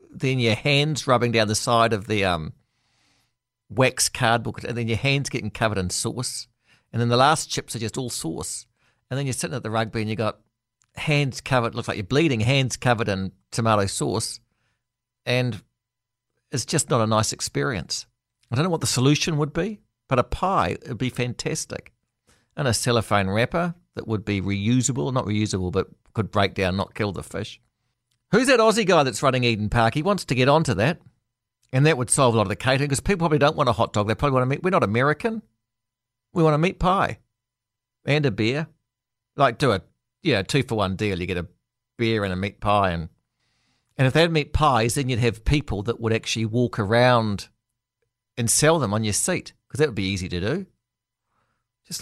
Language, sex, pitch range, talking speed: English, male, 110-135 Hz, 210 wpm